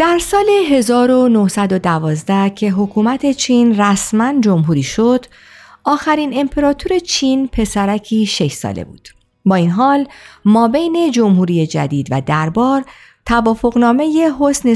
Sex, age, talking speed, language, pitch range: female, 50-69, 105 wpm, Persian, 175-275 Hz